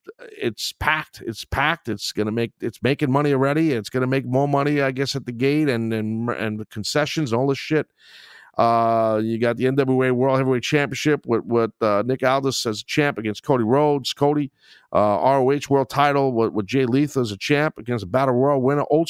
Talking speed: 205 wpm